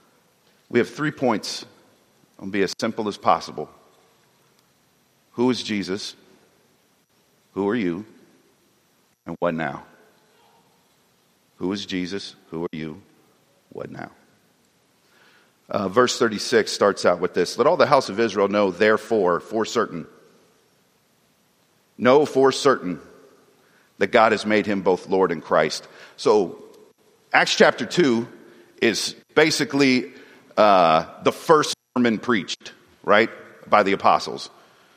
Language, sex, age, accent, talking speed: English, male, 40-59, American, 125 wpm